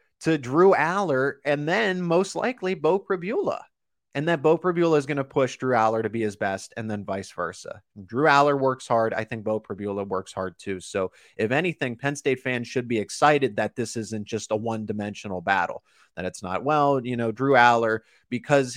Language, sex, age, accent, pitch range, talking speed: English, male, 20-39, American, 100-135 Hz, 200 wpm